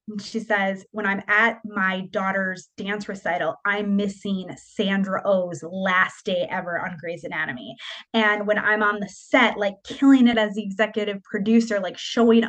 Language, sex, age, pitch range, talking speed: English, female, 20-39, 195-235 Hz, 170 wpm